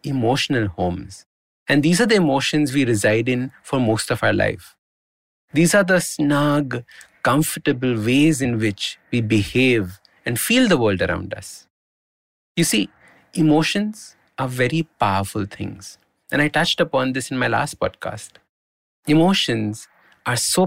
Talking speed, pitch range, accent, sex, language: 145 wpm, 105-155 Hz, Indian, male, English